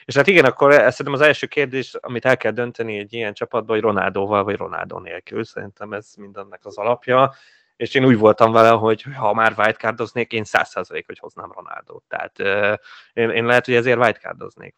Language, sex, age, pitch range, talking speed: Hungarian, male, 20-39, 105-130 Hz, 195 wpm